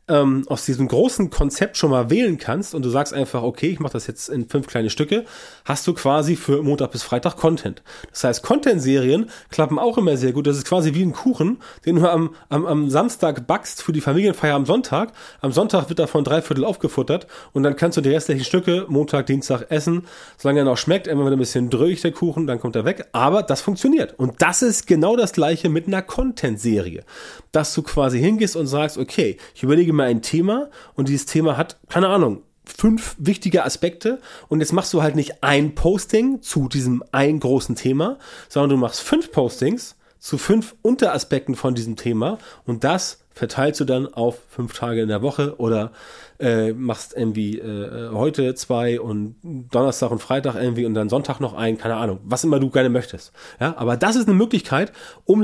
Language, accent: German, German